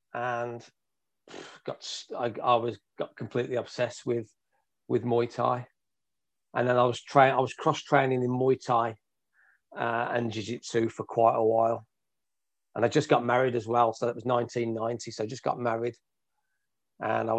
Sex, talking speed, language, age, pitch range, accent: male, 165 wpm, English, 40-59, 115-130 Hz, British